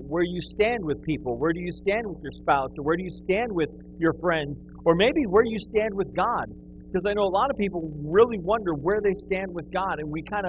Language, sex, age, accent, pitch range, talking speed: English, male, 50-69, American, 145-195 Hz, 250 wpm